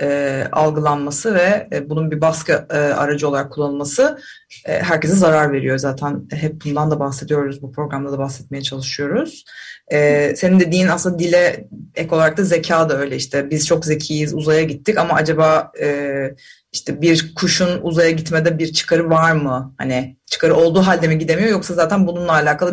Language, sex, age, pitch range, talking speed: Turkish, female, 30-49, 150-195 Hz, 170 wpm